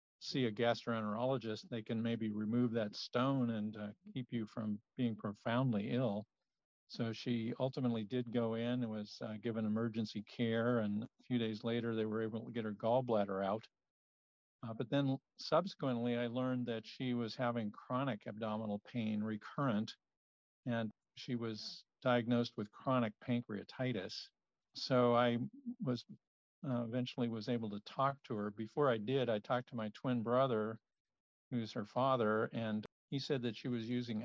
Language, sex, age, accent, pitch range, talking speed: English, male, 50-69, American, 110-125 Hz, 160 wpm